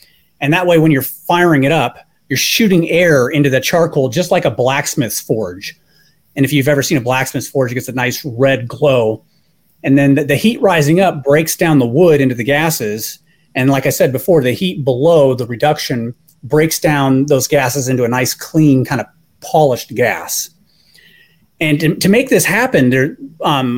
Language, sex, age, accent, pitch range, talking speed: English, male, 30-49, American, 135-170 Hz, 190 wpm